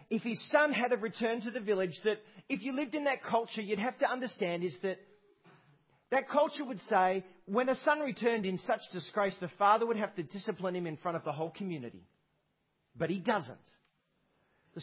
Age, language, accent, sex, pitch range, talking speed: 40-59, English, Australian, male, 165-220 Hz, 200 wpm